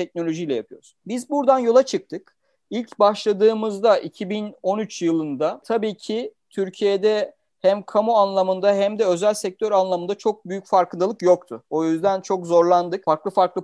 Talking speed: 135 wpm